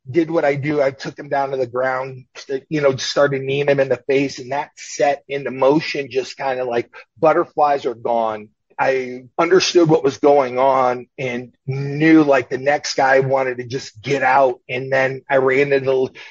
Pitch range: 130-160 Hz